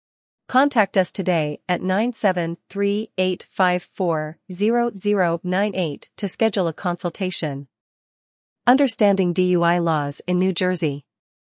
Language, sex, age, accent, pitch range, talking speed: English, female, 40-59, American, 170-200 Hz, 80 wpm